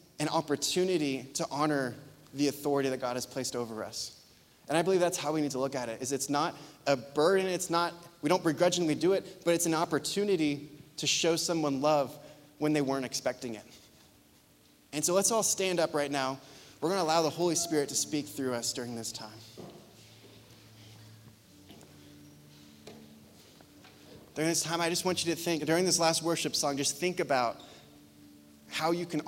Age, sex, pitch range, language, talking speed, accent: 20-39, male, 130-165 Hz, English, 180 wpm, American